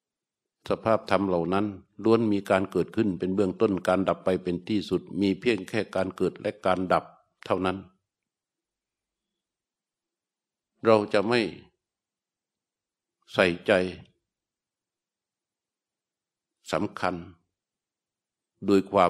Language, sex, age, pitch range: Thai, male, 60-79, 90-105 Hz